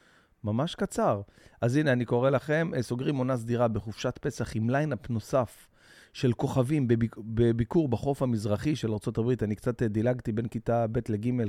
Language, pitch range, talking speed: Hebrew, 105-140 Hz, 155 wpm